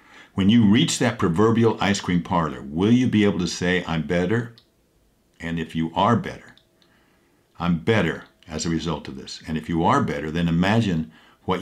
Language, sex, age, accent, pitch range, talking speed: English, male, 60-79, American, 80-105 Hz, 185 wpm